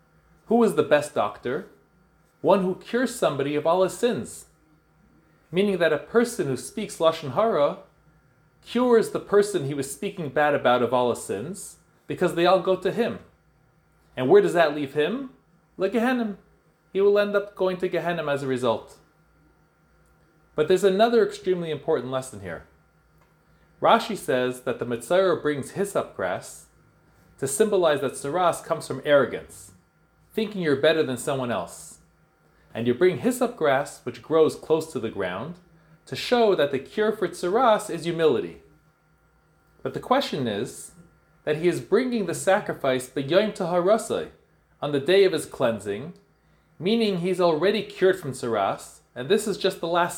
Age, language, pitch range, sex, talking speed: 30-49, English, 150-200 Hz, male, 165 wpm